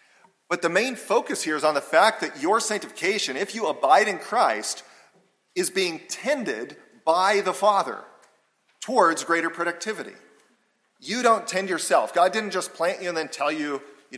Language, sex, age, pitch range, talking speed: English, male, 40-59, 125-180 Hz, 170 wpm